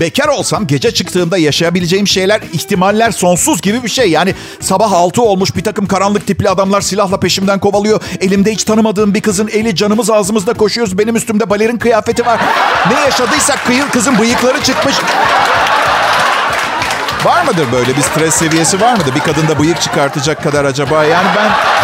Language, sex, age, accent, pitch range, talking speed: Turkish, male, 50-69, native, 170-230 Hz, 160 wpm